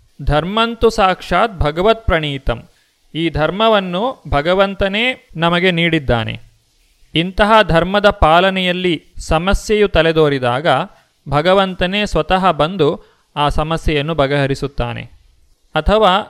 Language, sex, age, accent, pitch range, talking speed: Kannada, male, 30-49, native, 145-185 Hz, 75 wpm